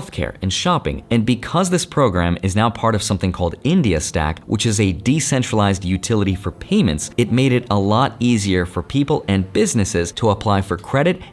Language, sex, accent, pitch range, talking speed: English, male, American, 95-125 Hz, 190 wpm